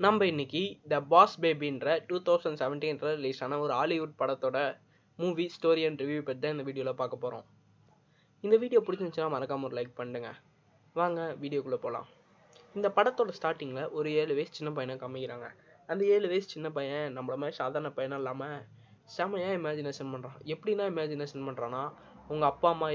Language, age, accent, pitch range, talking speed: Tamil, 20-39, native, 135-175 Hz, 150 wpm